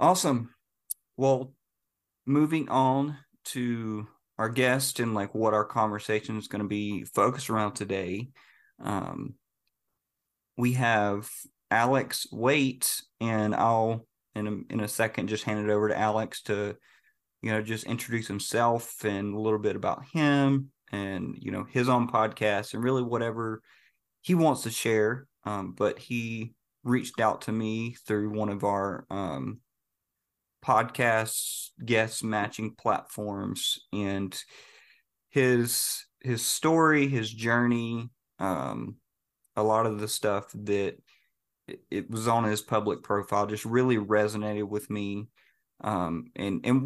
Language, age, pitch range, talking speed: English, 30-49, 105-125 Hz, 135 wpm